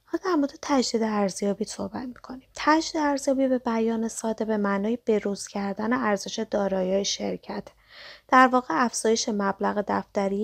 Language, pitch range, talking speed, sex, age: Persian, 195-240 Hz, 125 wpm, female, 20-39